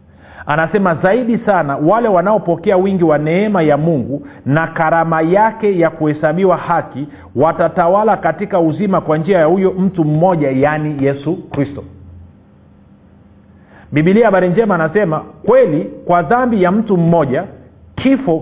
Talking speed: 125 wpm